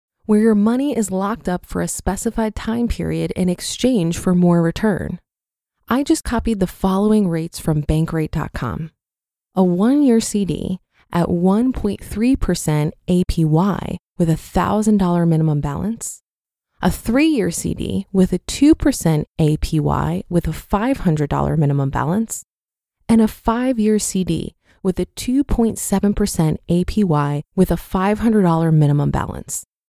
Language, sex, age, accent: English, female, 20-39, American